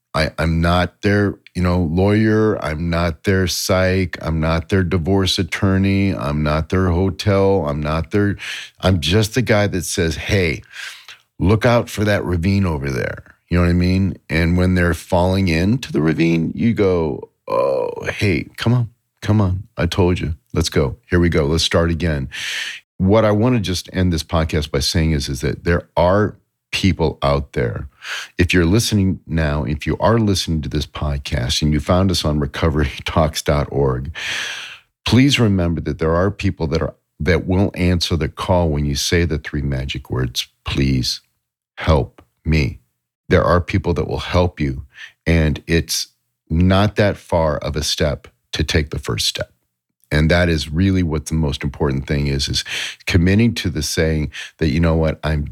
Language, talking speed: English, 180 wpm